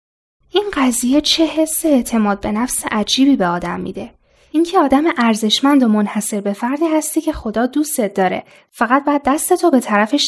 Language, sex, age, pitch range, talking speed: Persian, female, 10-29, 210-300 Hz, 165 wpm